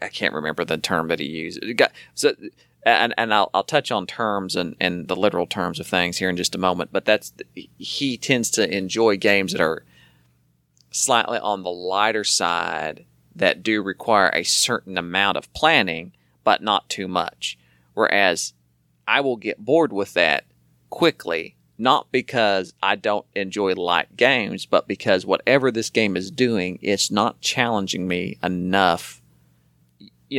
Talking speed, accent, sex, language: 160 wpm, American, male, English